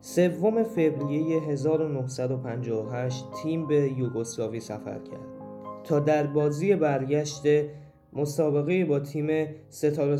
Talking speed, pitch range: 95 wpm, 130-175 Hz